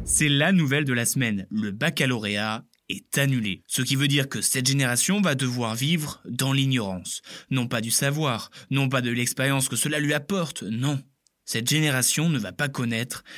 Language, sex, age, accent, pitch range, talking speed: French, male, 20-39, French, 120-145 Hz, 185 wpm